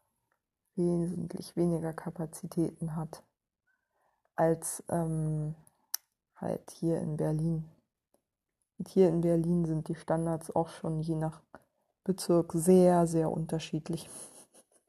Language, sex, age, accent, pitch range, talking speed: German, female, 20-39, German, 175-210 Hz, 100 wpm